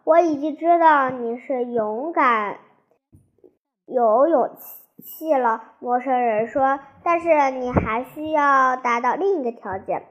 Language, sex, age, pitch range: Chinese, male, 10-29, 240-305 Hz